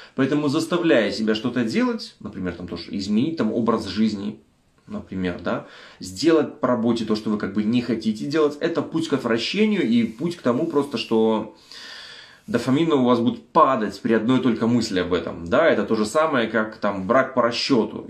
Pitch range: 115-160 Hz